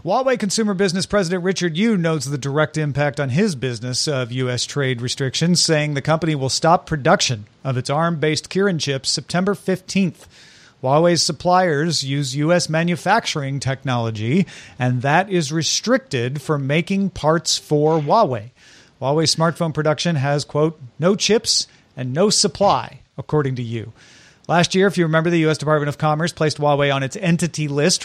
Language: English